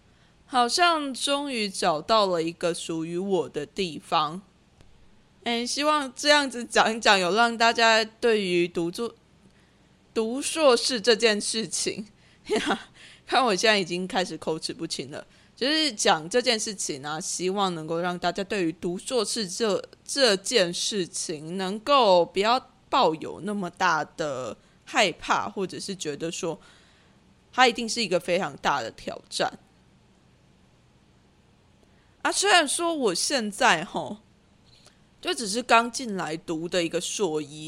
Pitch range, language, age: 175-240 Hz, Chinese, 20-39